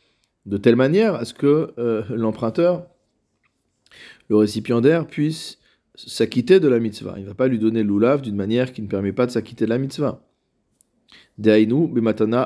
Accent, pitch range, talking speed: French, 105-130 Hz, 165 wpm